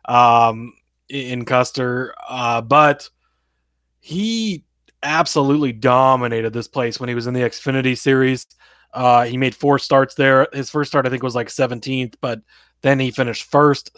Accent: American